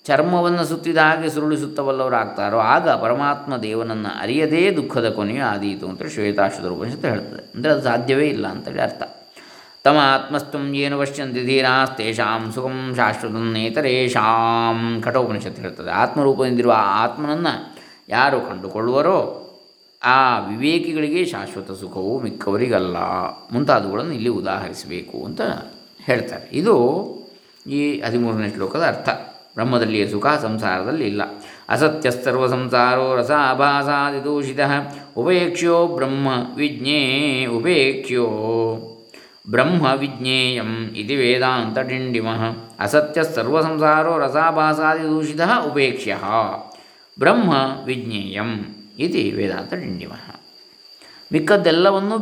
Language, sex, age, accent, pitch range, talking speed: Kannada, male, 20-39, native, 115-150 Hz, 95 wpm